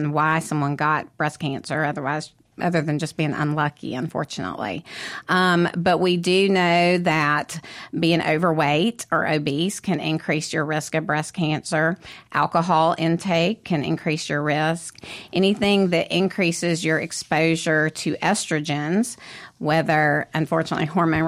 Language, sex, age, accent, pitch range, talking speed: English, female, 40-59, American, 155-180 Hz, 125 wpm